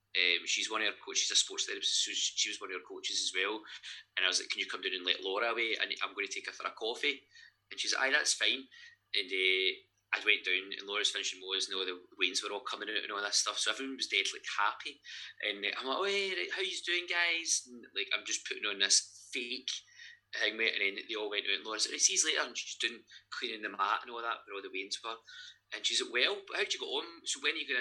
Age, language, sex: 20-39, English, male